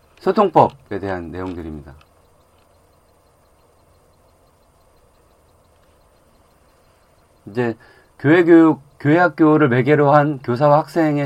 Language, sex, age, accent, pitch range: Korean, male, 40-59, native, 90-140 Hz